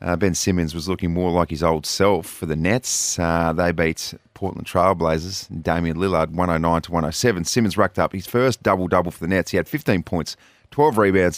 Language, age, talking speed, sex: English, 30-49, 200 wpm, male